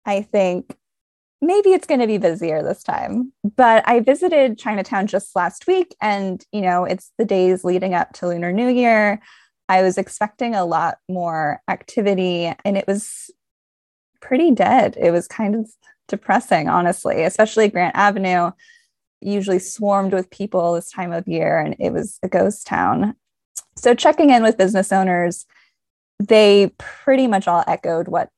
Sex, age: female, 10-29